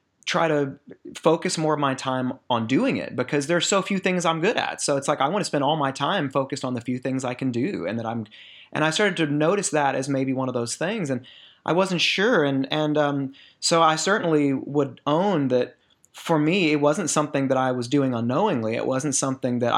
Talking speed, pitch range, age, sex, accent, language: 235 wpm, 130-160 Hz, 30-49, male, American, English